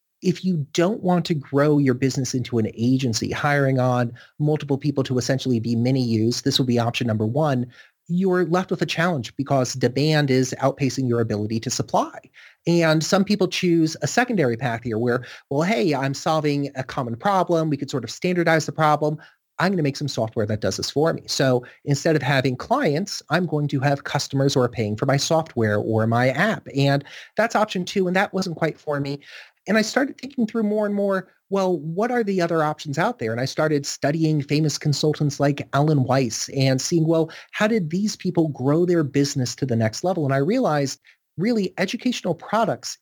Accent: American